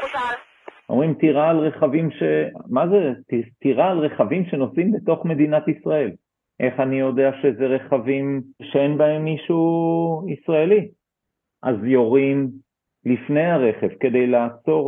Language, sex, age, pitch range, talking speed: Hebrew, male, 40-59, 110-140 Hz, 115 wpm